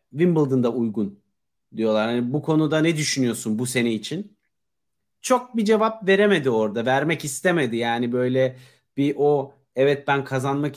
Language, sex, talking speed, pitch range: Turkish, male, 140 wpm, 130-165 Hz